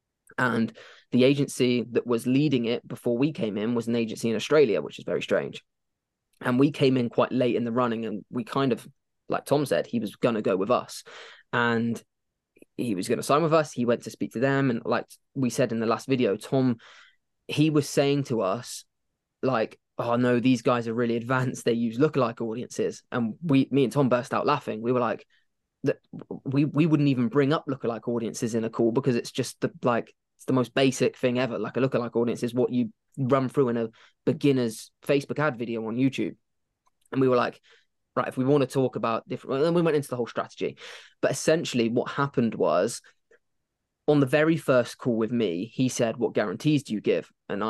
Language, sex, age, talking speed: English, male, 20-39, 215 wpm